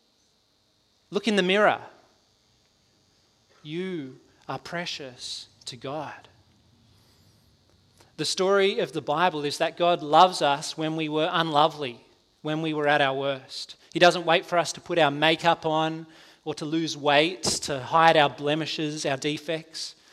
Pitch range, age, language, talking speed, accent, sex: 145-175 Hz, 30-49, English, 145 wpm, Australian, male